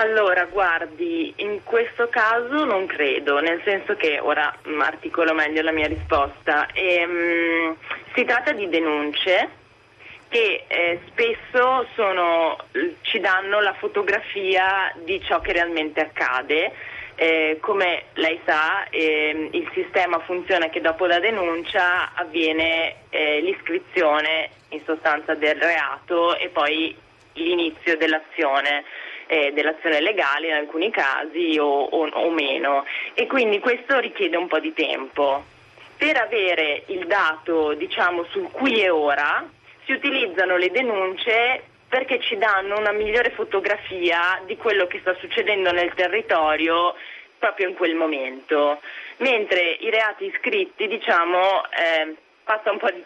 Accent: native